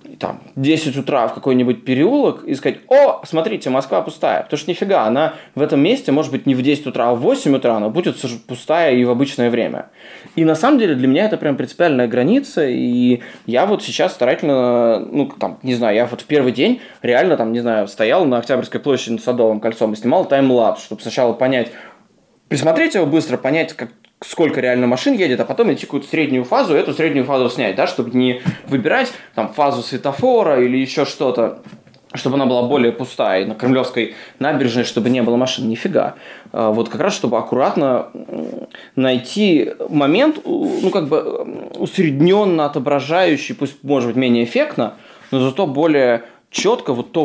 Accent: native